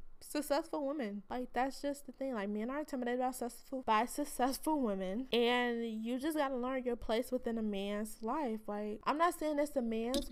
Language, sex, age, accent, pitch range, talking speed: English, female, 20-39, American, 210-260 Hz, 200 wpm